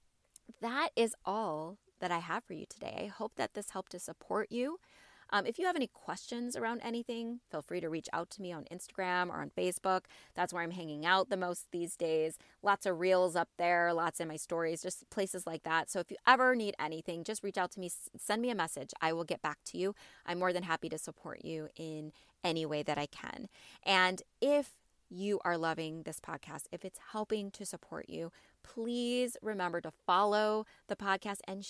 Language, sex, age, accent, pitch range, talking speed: English, female, 20-39, American, 165-215 Hz, 215 wpm